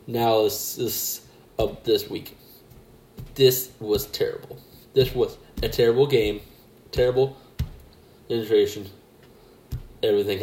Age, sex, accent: 20-39, male, American